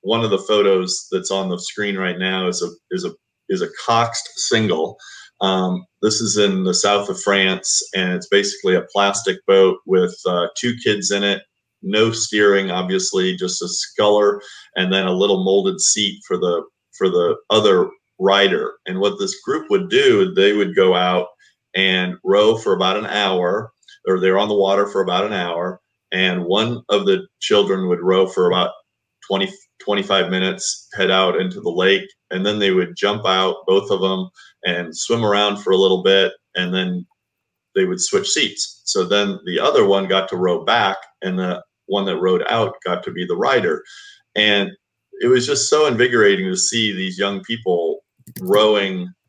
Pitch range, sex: 95-115 Hz, male